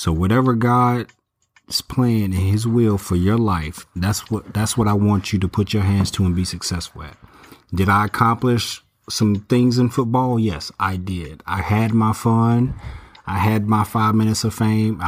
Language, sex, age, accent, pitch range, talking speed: English, male, 30-49, American, 90-110 Hz, 190 wpm